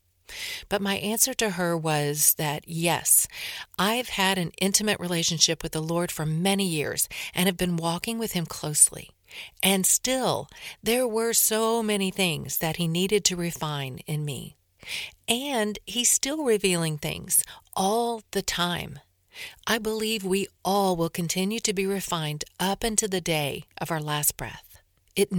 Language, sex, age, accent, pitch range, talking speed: English, female, 50-69, American, 165-210 Hz, 155 wpm